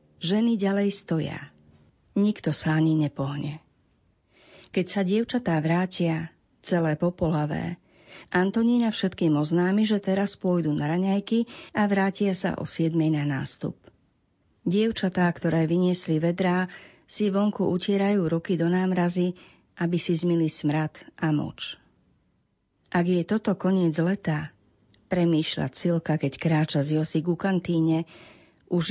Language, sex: Slovak, female